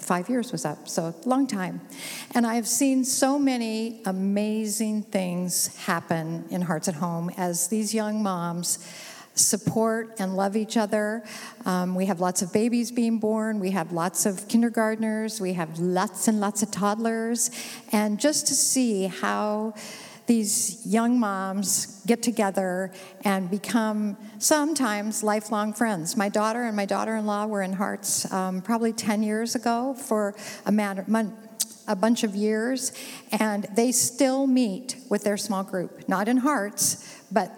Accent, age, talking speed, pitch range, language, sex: American, 50-69, 155 wpm, 195-230 Hz, English, female